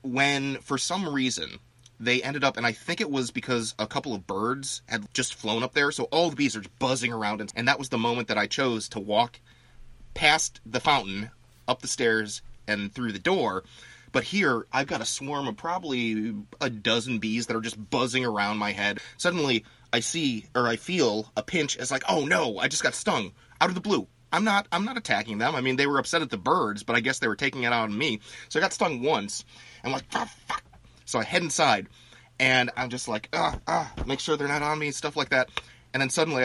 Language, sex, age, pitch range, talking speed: English, male, 30-49, 110-140 Hz, 235 wpm